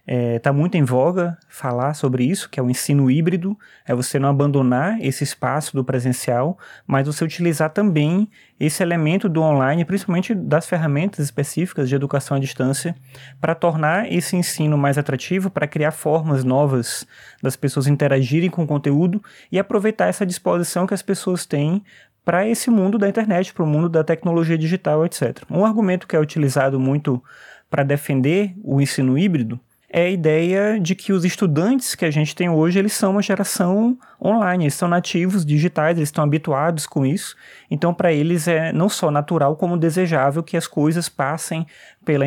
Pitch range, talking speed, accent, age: 140-180 Hz, 175 wpm, Brazilian, 20-39